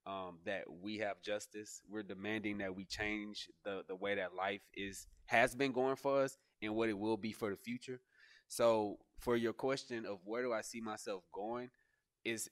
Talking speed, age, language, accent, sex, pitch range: 195 wpm, 20-39, English, American, male, 100-115 Hz